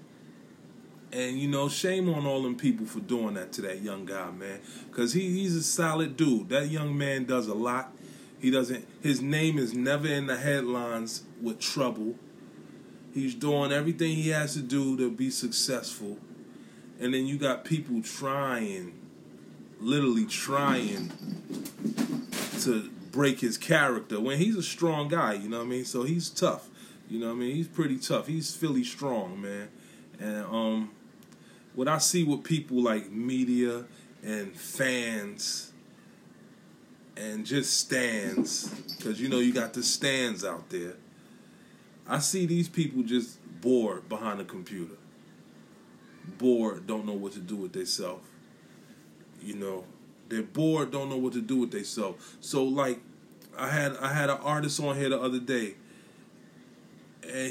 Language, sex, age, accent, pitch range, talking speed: English, male, 20-39, American, 120-150 Hz, 155 wpm